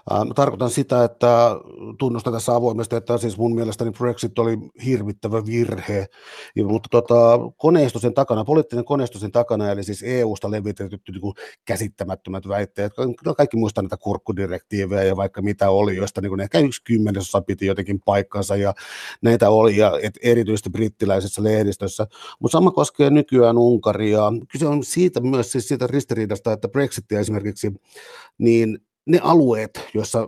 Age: 60-79